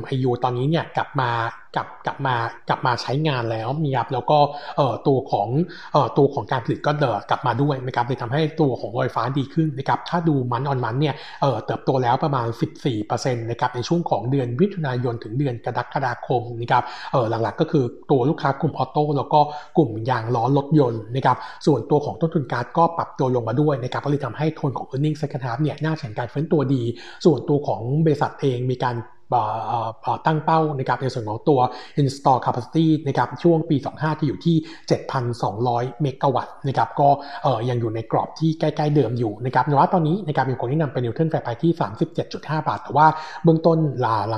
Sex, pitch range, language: male, 125-155 Hz, Thai